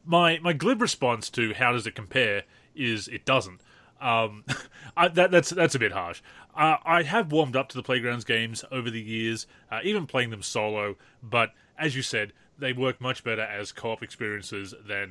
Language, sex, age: English, male, 30-49